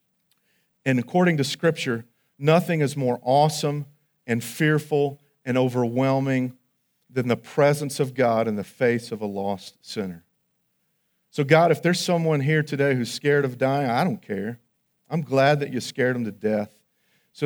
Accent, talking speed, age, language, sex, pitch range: American, 160 wpm, 40-59, English, male, 115-150 Hz